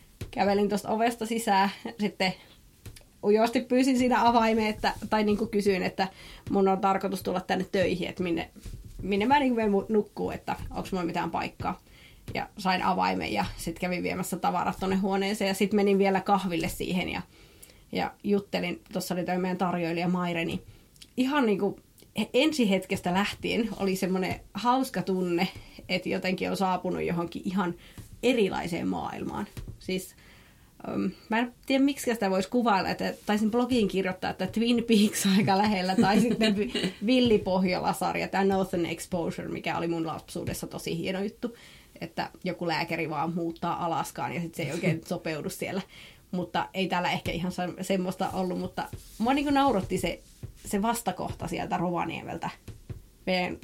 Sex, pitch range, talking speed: female, 180-215 Hz, 150 wpm